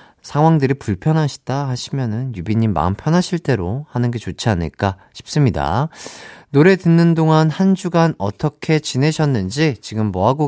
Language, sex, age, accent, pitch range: Korean, male, 40-59, native, 105-155 Hz